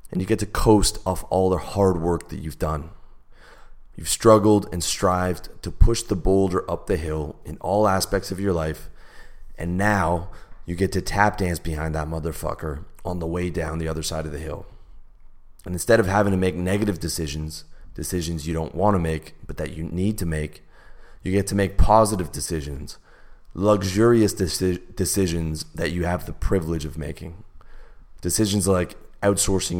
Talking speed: 175 wpm